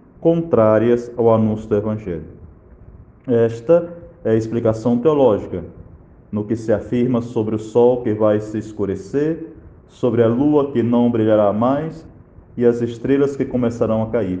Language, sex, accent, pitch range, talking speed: Portuguese, male, Brazilian, 110-135 Hz, 145 wpm